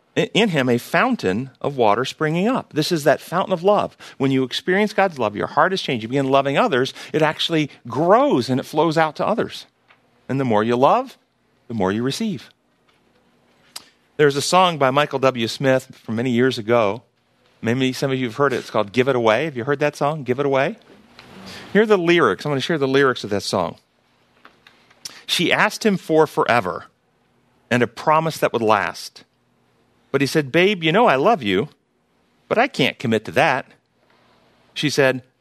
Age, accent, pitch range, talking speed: 40-59, American, 125-160 Hz, 200 wpm